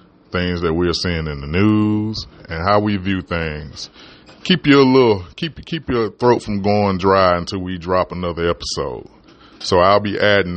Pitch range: 90-105 Hz